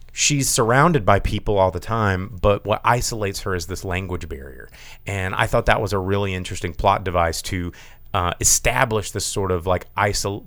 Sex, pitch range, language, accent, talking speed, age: male, 90-105 Hz, English, American, 190 wpm, 30-49